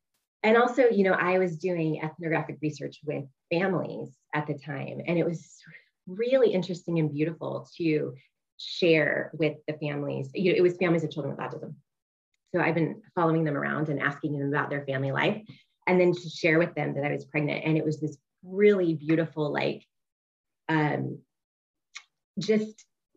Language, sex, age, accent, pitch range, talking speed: English, female, 30-49, American, 150-205 Hz, 175 wpm